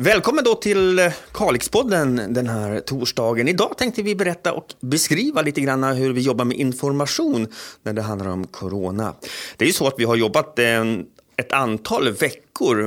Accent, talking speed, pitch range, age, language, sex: native, 170 wpm, 105-130 Hz, 30-49, Swedish, male